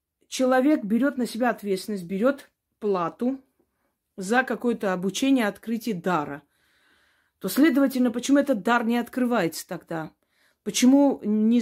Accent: native